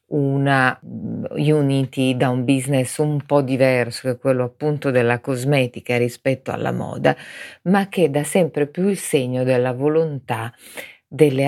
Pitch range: 125-155 Hz